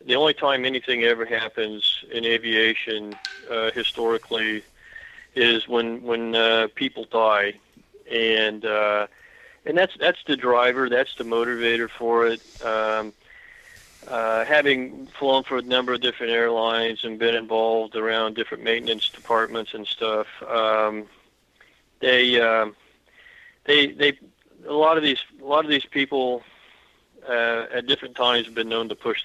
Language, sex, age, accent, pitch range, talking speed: English, male, 40-59, American, 110-125 Hz, 145 wpm